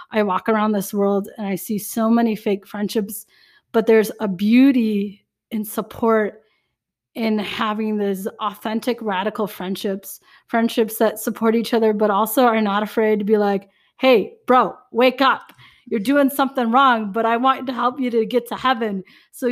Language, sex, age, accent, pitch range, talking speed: English, female, 20-39, American, 200-230 Hz, 170 wpm